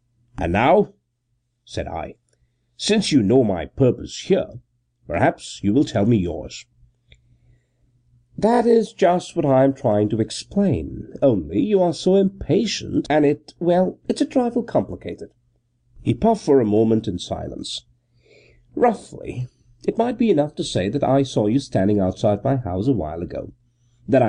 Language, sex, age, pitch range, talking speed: English, male, 50-69, 105-150 Hz, 155 wpm